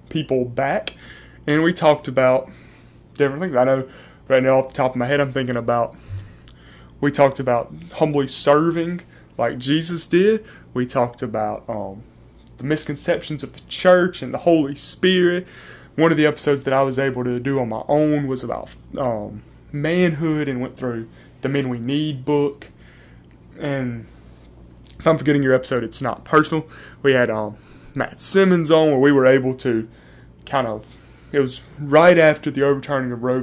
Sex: male